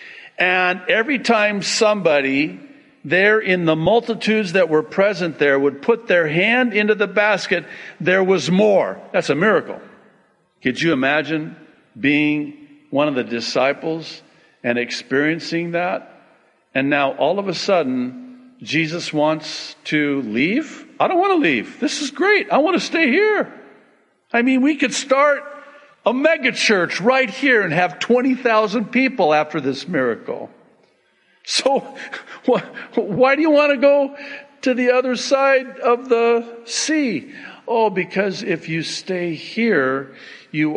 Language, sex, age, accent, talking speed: English, male, 50-69, American, 140 wpm